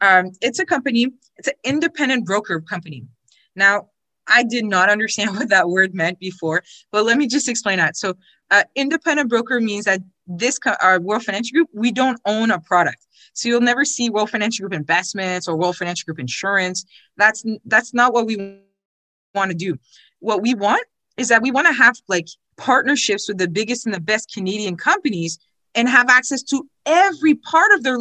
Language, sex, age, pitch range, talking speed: English, female, 20-39, 195-265 Hz, 190 wpm